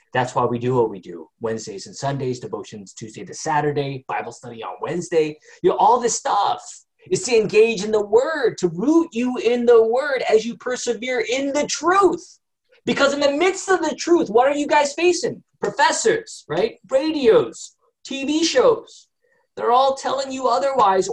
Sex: male